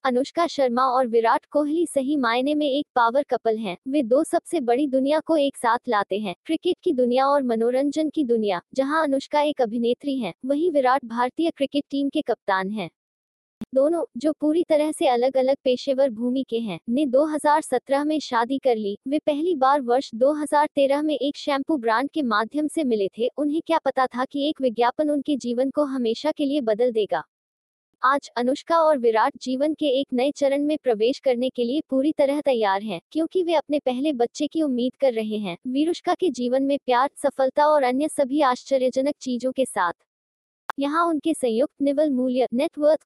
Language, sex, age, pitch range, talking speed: Hindi, female, 20-39, 245-295 Hz, 190 wpm